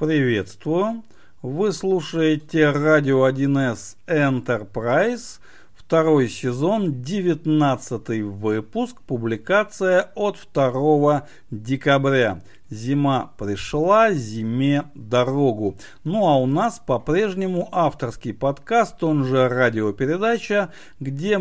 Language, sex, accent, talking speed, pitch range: Russian, male, native, 80 wpm, 125-175 Hz